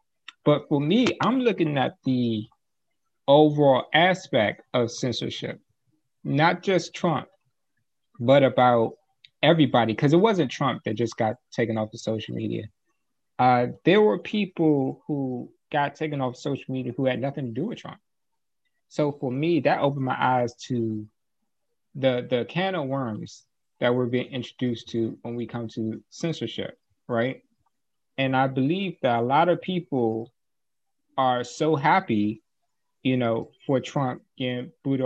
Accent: American